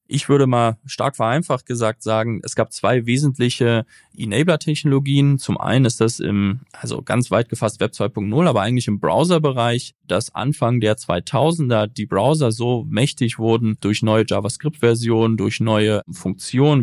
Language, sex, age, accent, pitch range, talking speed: German, male, 20-39, German, 110-130 Hz, 150 wpm